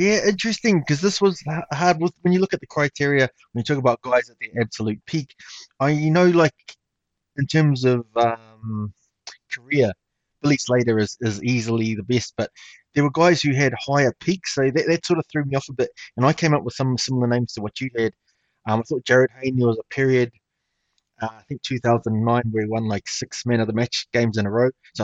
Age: 20-39